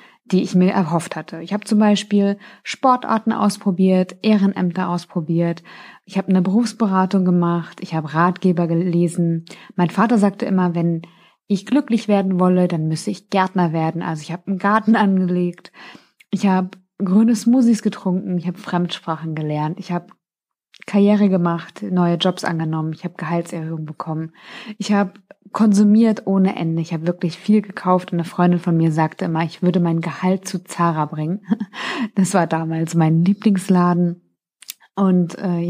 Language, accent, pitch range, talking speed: German, German, 175-210 Hz, 155 wpm